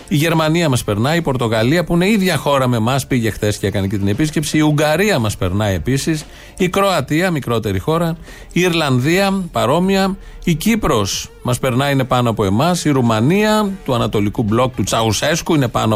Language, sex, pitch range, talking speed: Greek, male, 120-160 Hz, 180 wpm